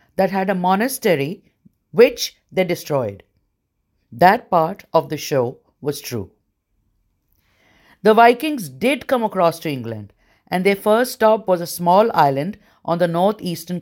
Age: 50-69